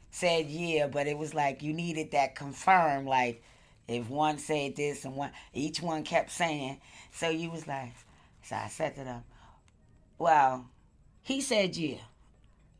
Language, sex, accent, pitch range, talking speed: English, female, American, 120-165 Hz, 160 wpm